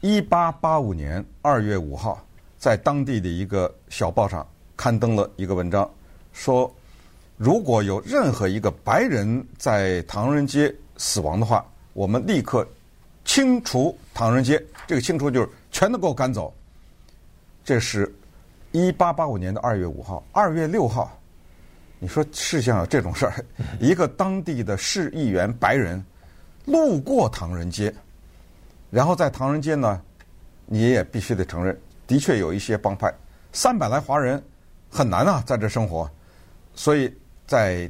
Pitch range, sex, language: 85-130 Hz, male, Chinese